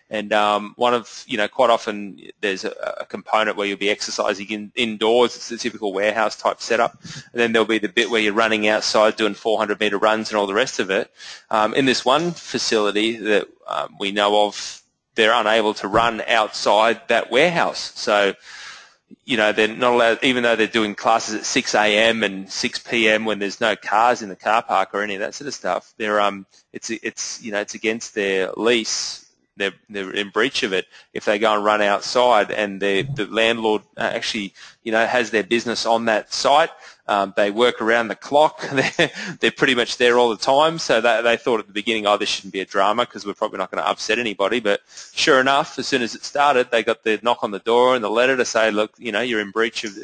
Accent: Australian